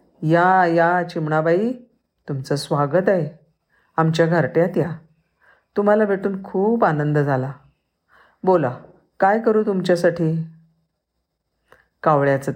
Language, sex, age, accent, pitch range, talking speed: Marathi, female, 40-59, native, 145-190 Hz, 90 wpm